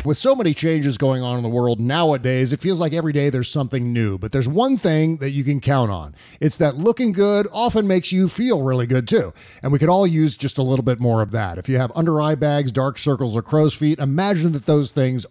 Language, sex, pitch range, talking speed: English, male, 130-170 Hz, 255 wpm